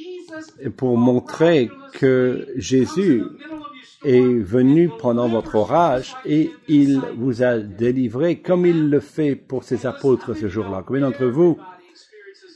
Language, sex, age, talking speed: English, male, 50-69, 125 wpm